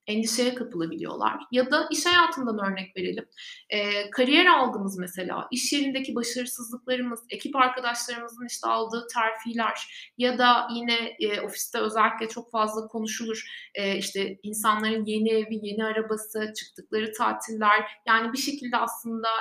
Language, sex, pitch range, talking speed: Turkish, female, 215-280 Hz, 130 wpm